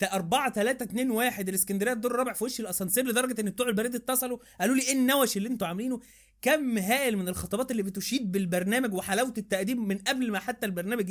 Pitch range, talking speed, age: 195-245 Hz, 195 wpm, 20-39